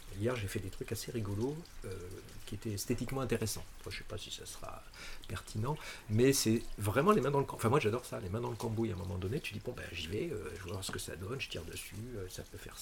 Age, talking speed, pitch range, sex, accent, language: 50-69, 295 wpm, 100-120 Hz, male, French, French